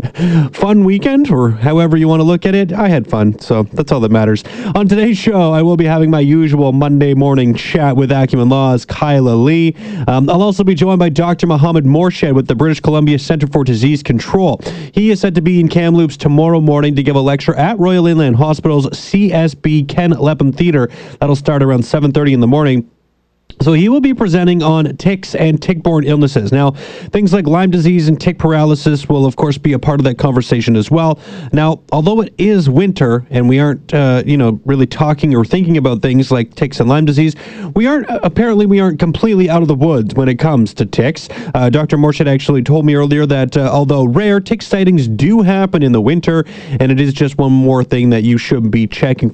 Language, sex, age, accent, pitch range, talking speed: English, male, 30-49, American, 135-175 Hz, 215 wpm